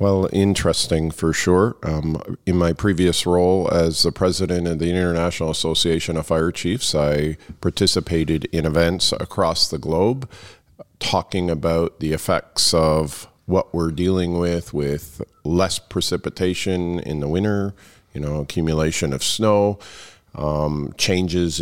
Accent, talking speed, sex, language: American, 135 wpm, male, English